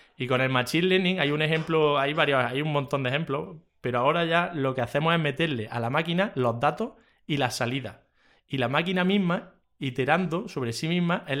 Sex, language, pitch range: male, Spanish, 130-160 Hz